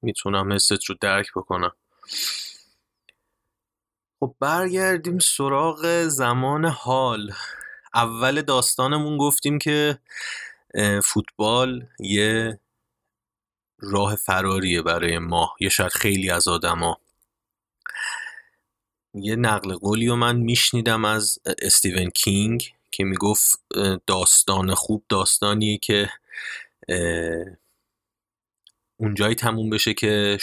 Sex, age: male, 30-49